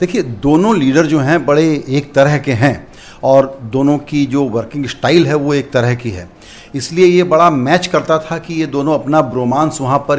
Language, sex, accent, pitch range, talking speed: Hindi, male, native, 135-180 Hz, 205 wpm